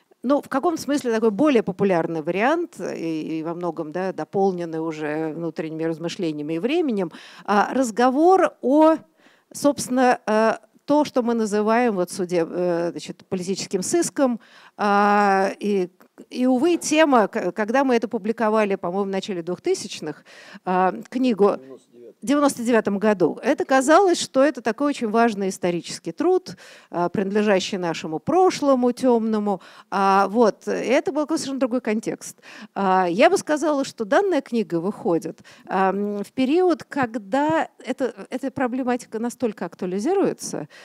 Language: Russian